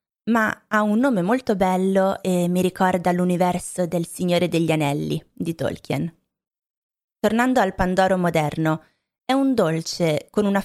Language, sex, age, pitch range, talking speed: Italian, female, 20-39, 175-210 Hz, 140 wpm